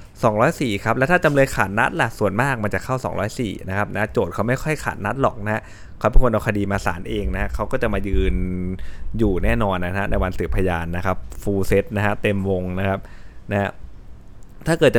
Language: Thai